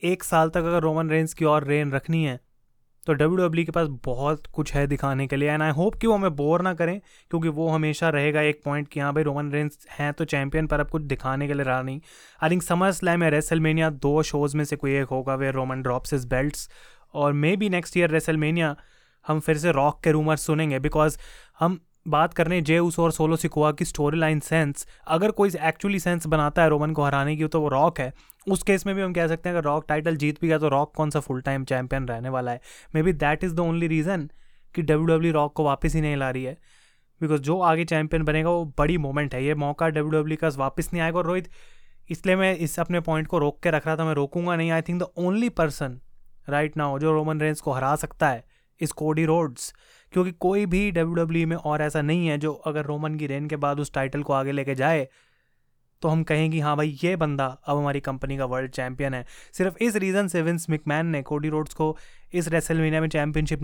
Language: Hindi